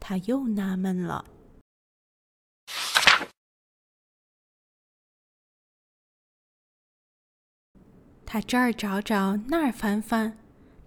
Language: Chinese